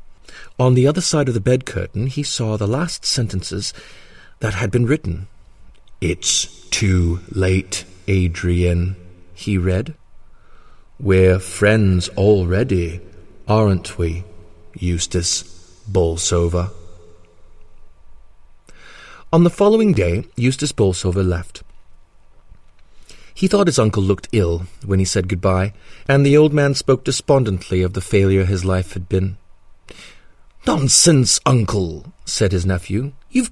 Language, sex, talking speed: English, male, 115 wpm